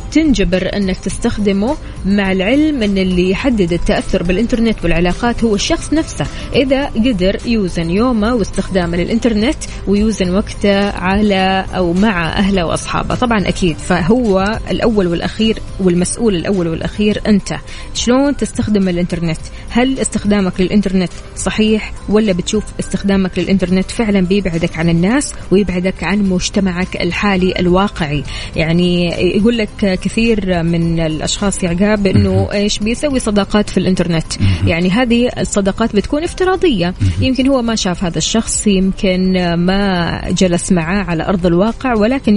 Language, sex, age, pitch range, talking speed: Arabic, female, 20-39, 180-220 Hz, 125 wpm